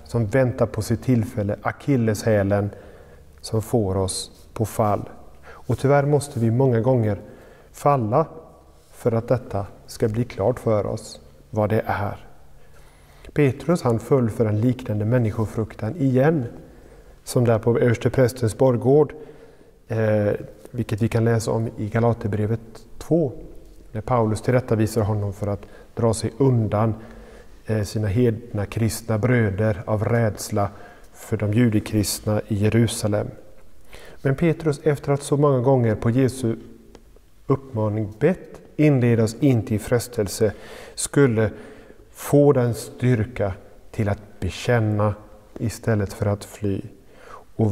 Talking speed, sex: 125 wpm, male